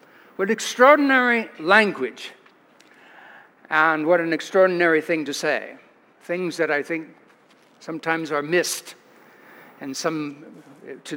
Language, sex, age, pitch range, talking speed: English, male, 60-79, 155-195 Hz, 105 wpm